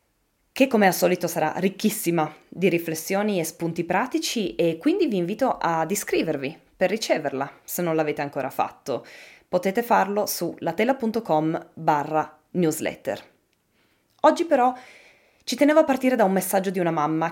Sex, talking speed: female, 145 wpm